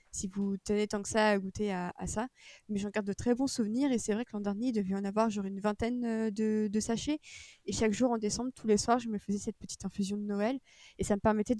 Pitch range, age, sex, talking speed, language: 205-240 Hz, 20-39, female, 280 wpm, French